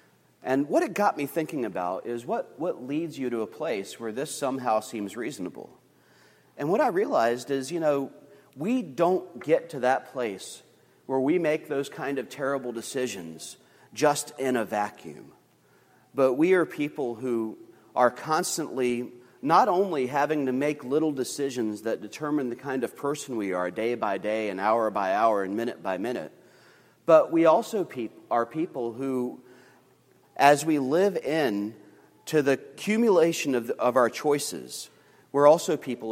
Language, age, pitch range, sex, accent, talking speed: English, 40-59, 120-155 Hz, male, American, 165 wpm